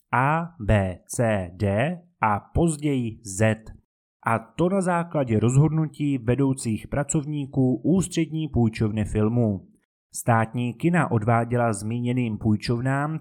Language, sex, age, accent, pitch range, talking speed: Czech, male, 30-49, native, 110-155 Hz, 100 wpm